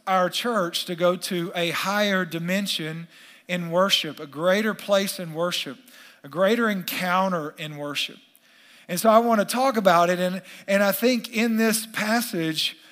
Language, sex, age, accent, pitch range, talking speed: English, male, 50-69, American, 165-220 Hz, 165 wpm